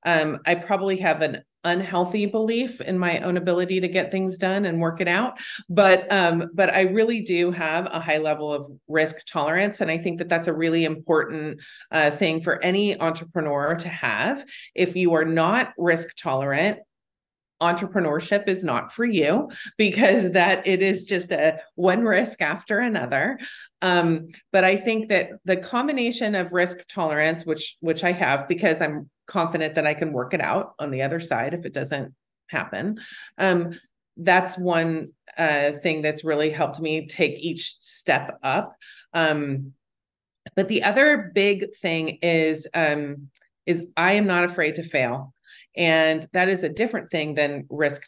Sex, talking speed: female, 170 wpm